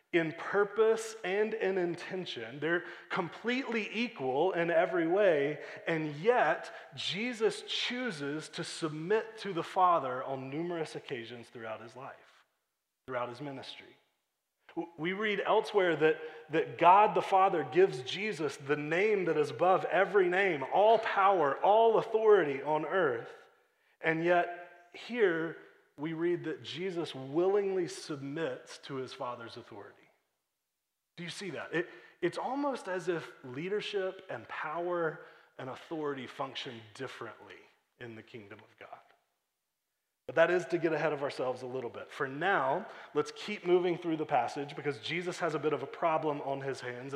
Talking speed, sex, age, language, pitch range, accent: 145 wpm, male, 30-49, English, 140-195 Hz, American